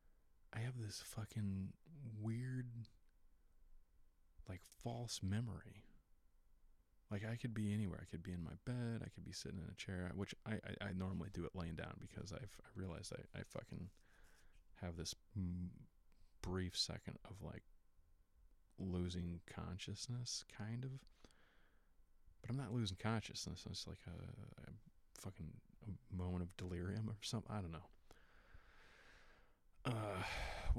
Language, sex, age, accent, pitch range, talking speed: English, male, 30-49, American, 90-110 Hz, 135 wpm